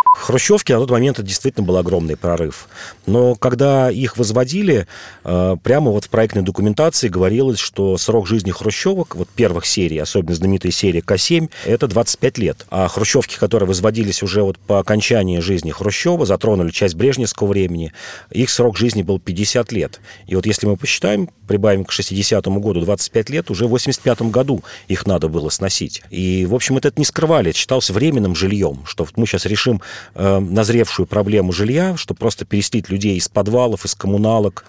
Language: Russian